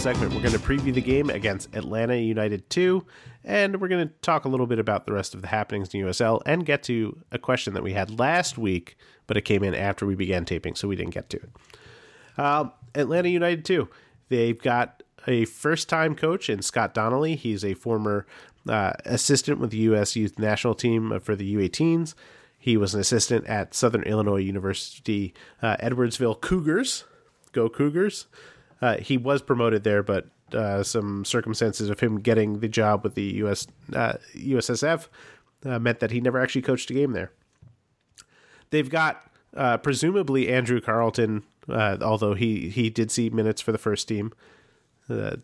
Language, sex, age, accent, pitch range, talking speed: English, male, 30-49, American, 105-130 Hz, 180 wpm